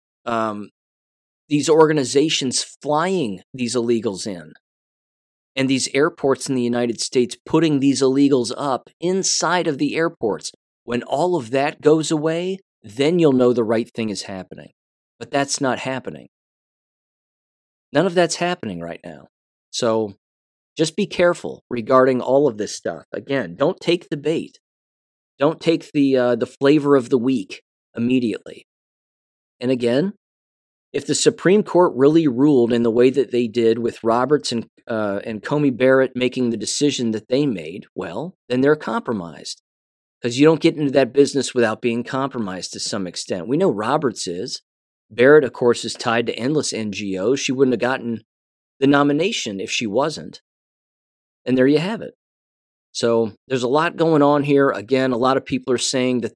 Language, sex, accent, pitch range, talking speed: English, male, American, 115-145 Hz, 165 wpm